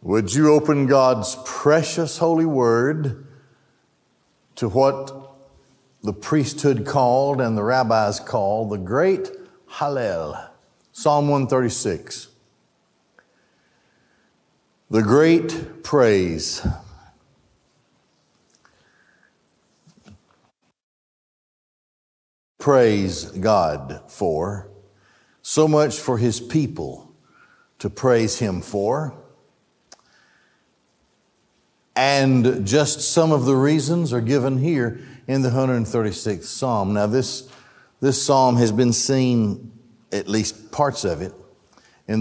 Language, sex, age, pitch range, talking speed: English, male, 60-79, 105-140 Hz, 90 wpm